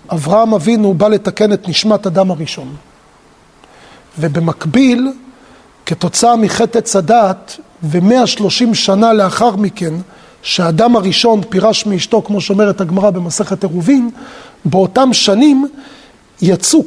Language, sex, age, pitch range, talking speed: Hebrew, male, 40-59, 195-250 Hz, 105 wpm